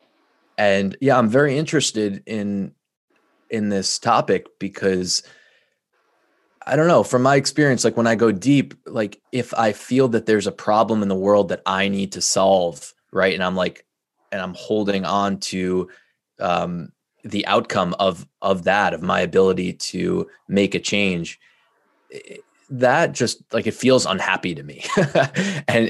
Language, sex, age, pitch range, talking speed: English, male, 20-39, 95-115 Hz, 160 wpm